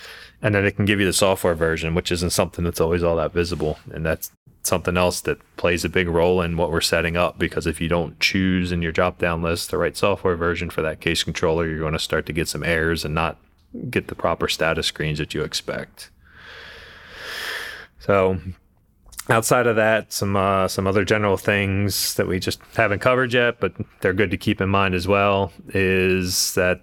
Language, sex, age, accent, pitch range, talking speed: English, male, 30-49, American, 85-100 Hz, 210 wpm